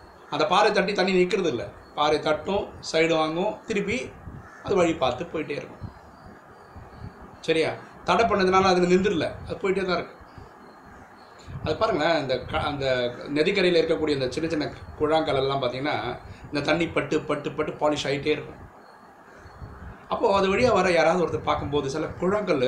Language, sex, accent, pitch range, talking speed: Tamil, male, native, 130-180 Hz, 145 wpm